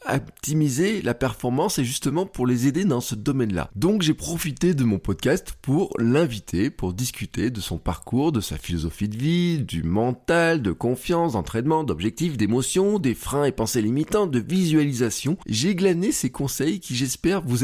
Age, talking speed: 20-39, 175 wpm